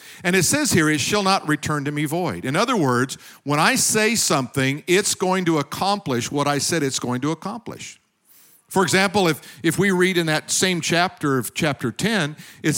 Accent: American